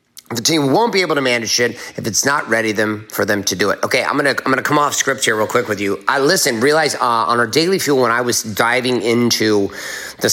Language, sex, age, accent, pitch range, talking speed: English, male, 30-49, American, 105-125 Hz, 260 wpm